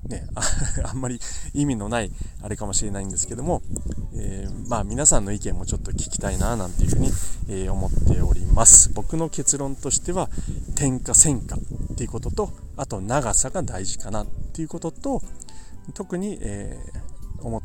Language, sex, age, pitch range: Japanese, male, 40-59, 95-125 Hz